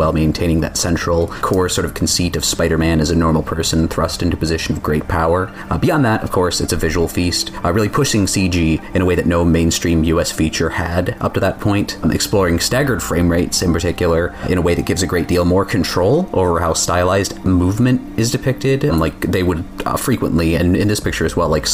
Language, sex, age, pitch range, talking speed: English, male, 30-49, 80-95 Hz, 225 wpm